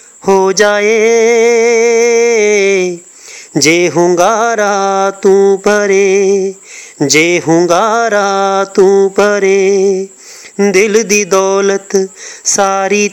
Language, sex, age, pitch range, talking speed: Hindi, male, 30-49, 195-235 Hz, 60 wpm